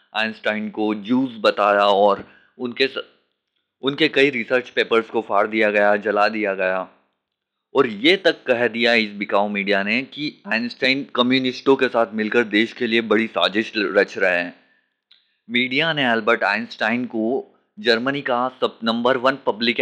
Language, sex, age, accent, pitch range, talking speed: Hindi, male, 20-39, native, 105-130 Hz, 155 wpm